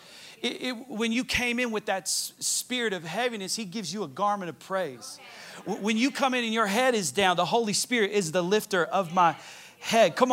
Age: 40-59